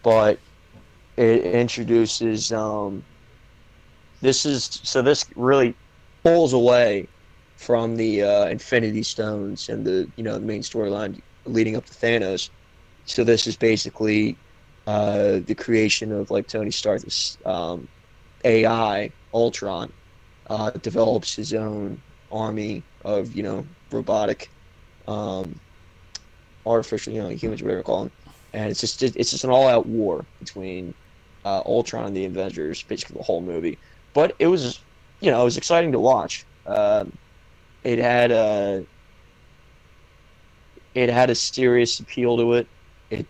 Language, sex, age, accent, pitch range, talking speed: English, male, 20-39, American, 100-120 Hz, 135 wpm